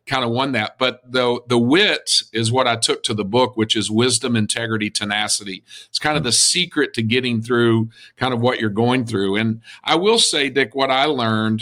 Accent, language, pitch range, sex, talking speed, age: American, English, 110-130 Hz, male, 215 wpm, 50-69